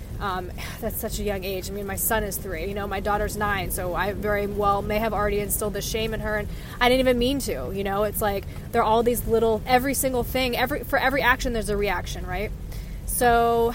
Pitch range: 205-235 Hz